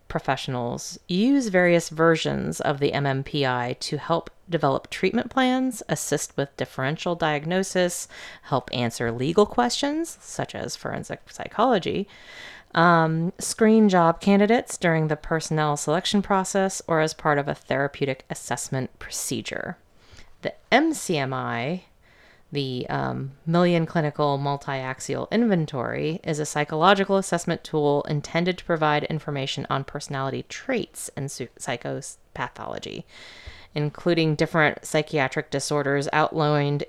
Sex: female